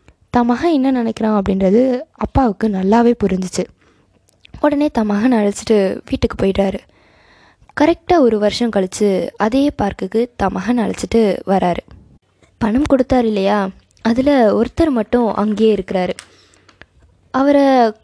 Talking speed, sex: 105 wpm, female